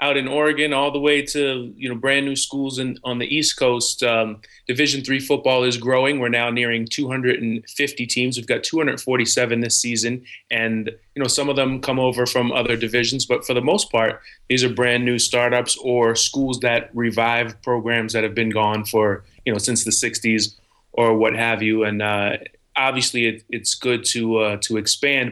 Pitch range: 110-130 Hz